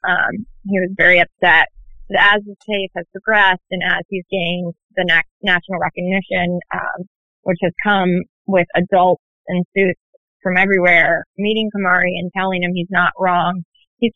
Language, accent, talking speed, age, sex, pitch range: English, American, 160 wpm, 20-39, female, 175-205 Hz